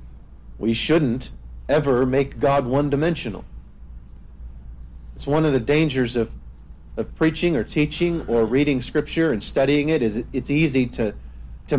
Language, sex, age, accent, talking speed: English, male, 50-69, American, 145 wpm